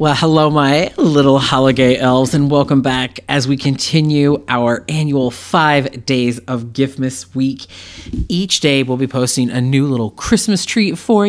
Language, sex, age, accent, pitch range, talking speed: English, male, 30-49, American, 125-175 Hz, 160 wpm